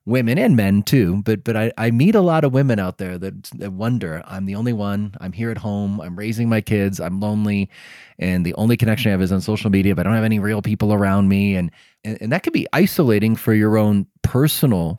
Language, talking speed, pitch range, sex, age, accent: English, 250 wpm, 95-140 Hz, male, 30-49, American